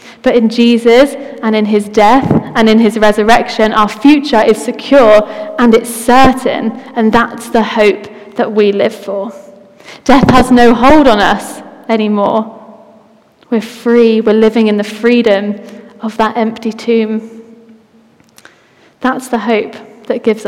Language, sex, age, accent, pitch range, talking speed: English, female, 10-29, British, 215-240 Hz, 145 wpm